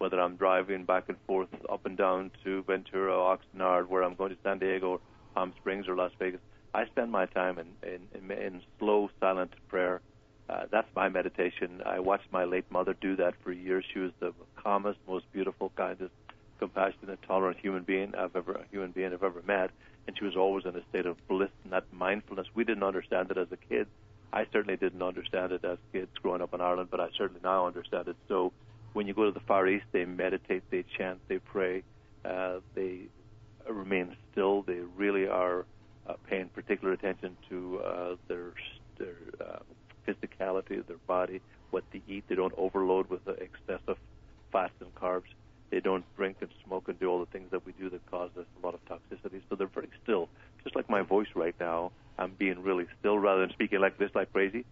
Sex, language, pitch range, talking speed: male, English, 90-100 Hz, 205 wpm